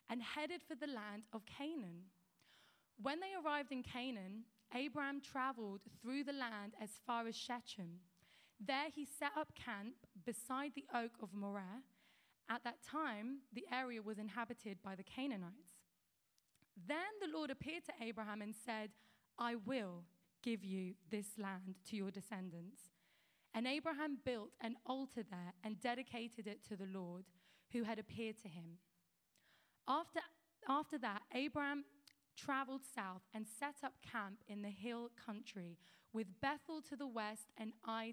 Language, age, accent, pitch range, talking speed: English, 20-39, British, 200-275 Hz, 150 wpm